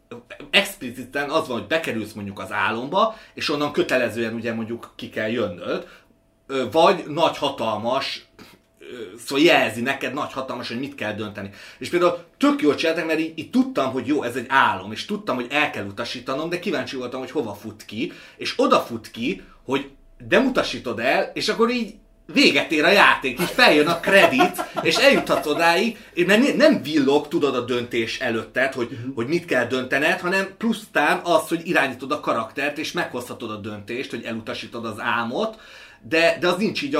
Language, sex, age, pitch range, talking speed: Hungarian, male, 30-49, 115-170 Hz, 175 wpm